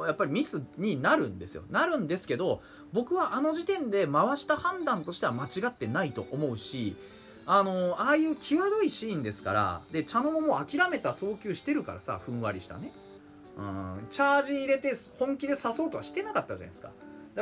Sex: male